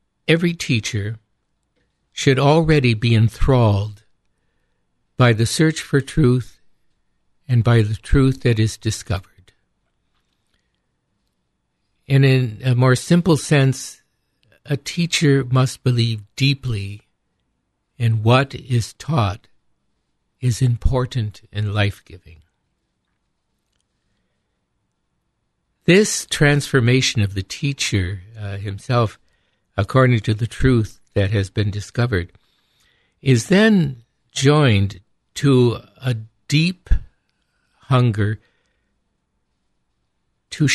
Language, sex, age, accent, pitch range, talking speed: English, male, 60-79, American, 105-135 Hz, 90 wpm